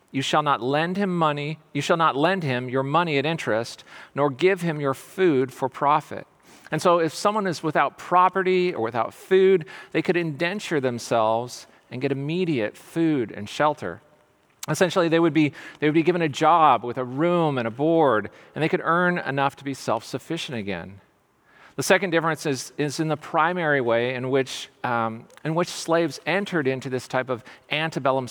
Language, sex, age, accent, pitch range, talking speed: English, male, 40-59, American, 130-165 Hz, 185 wpm